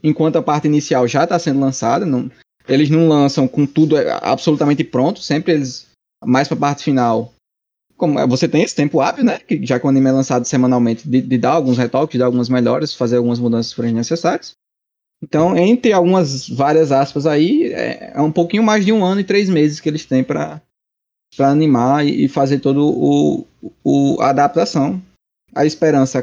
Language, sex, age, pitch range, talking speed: Portuguese, male, 20-39, 130-155 Hz, 195 wpm